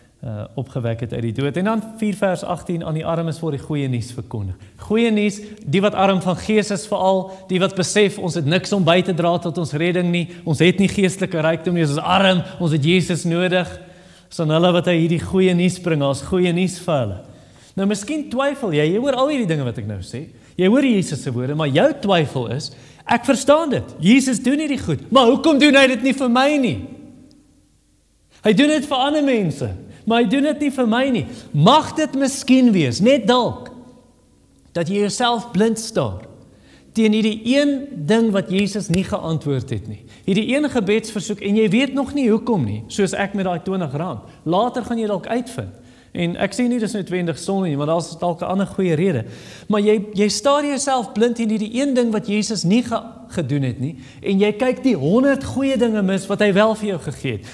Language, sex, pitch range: English, male, 160-230 Hz